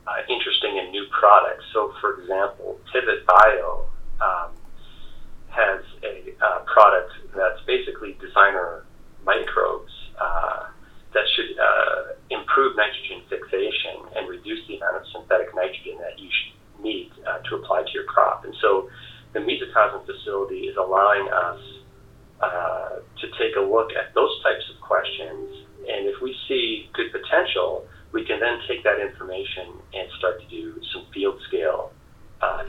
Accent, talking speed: American, 145 wpm